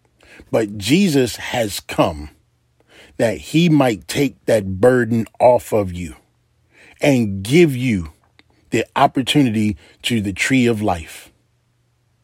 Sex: male